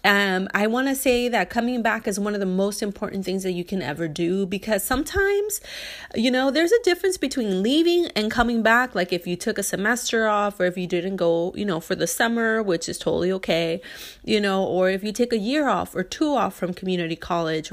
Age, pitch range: 30-49, 185-245 Hz